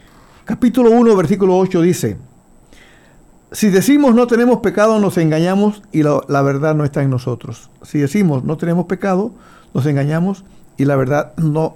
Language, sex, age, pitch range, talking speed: Spanish, male, 60-79, 155-205 Hz, 160 wpm